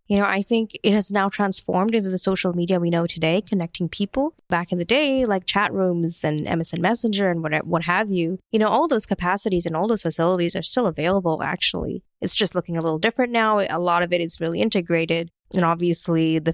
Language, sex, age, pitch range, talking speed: English, female, 20-39, 165-210 Hz, 225 wpm